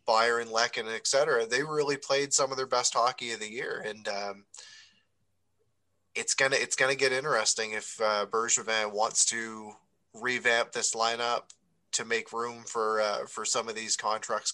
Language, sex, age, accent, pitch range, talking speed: English, male, 20-39, American, 110-125 Hz, 180 wpm